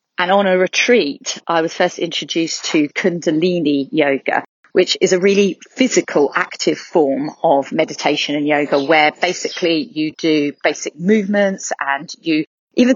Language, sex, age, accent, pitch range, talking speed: English, female, 30-49, British, 155-200 Hz, 145 wpm